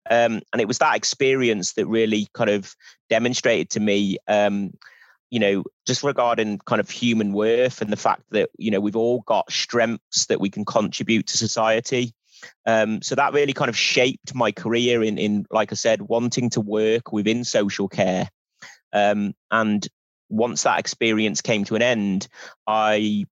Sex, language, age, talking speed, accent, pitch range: male, English, 30-49, 175 wpm, British, 105-115 Hz